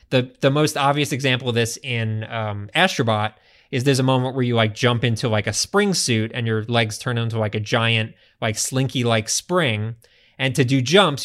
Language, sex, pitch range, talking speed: English, male, 115-145 Hz, 210 wpm